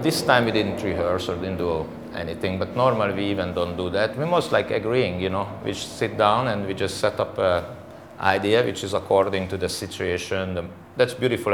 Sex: male